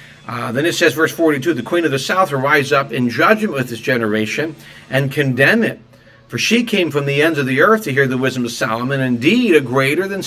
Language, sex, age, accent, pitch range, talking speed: English, male, 40-59, American, 110-155 Hz, 240 wpm